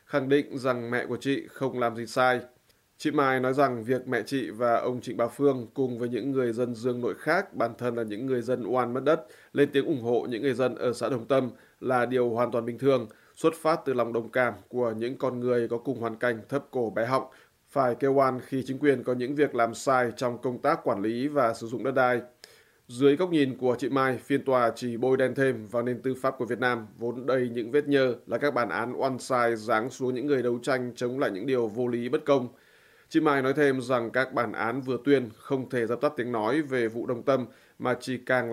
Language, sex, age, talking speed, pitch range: Vietnamese, male, 20-39, 250 wpm, 120-135 Hz